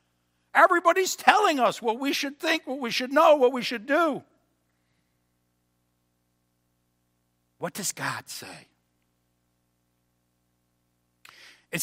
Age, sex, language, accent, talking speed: 60-79, male, English, American, 100 wpm